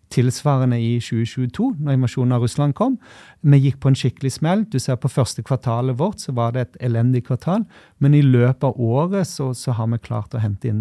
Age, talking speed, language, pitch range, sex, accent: 30-49, 215 wpm, English, 115-135 Hz, male, Swedish